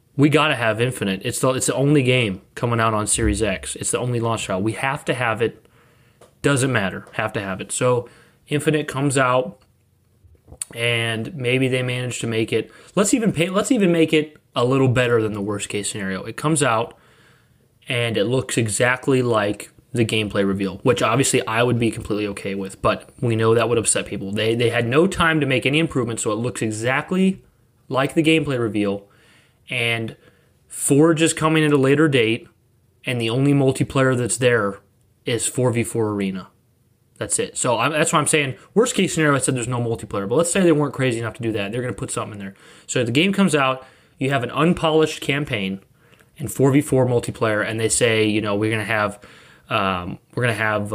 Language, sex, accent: English, male, American